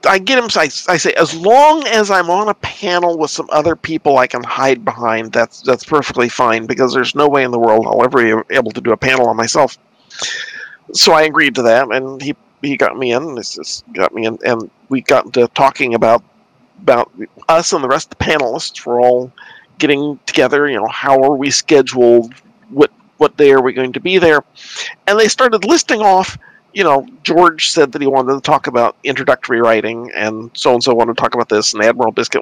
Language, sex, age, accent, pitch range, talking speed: English, male, 50-69, American, 125-195 Hz, 220 wpm